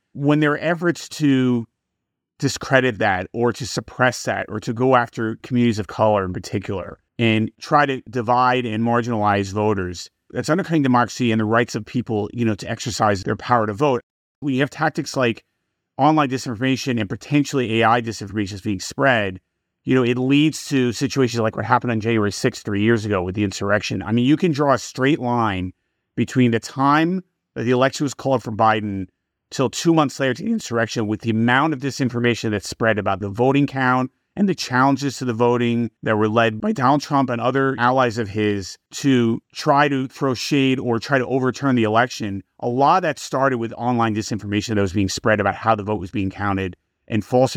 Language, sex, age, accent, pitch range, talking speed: English, male, 30-49, American, 105-130 Hz, 200 wpm